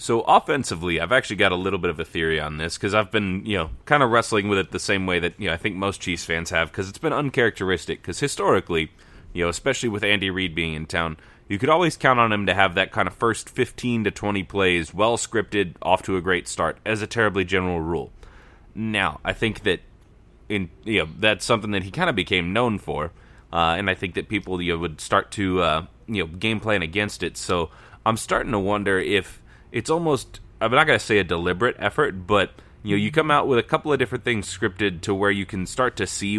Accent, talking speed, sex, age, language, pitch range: American, 240 wpm, male, 30-49, English, 90-110 Hz